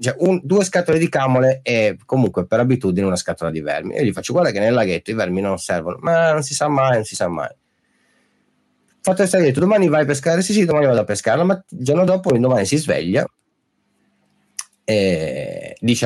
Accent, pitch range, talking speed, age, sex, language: native, 95-150 Hz, 215 wpm, 30-49, male, Italian